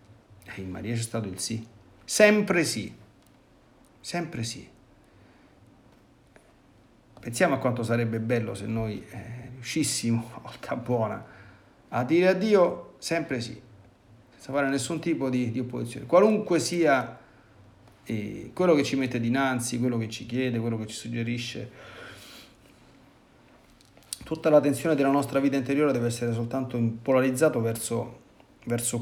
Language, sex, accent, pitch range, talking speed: Italian, male, native, 110-135 Hz, 125 wpm